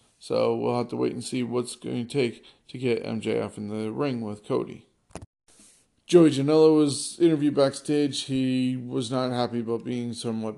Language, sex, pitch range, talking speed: English, male, 110-135 Hz, 180 wpm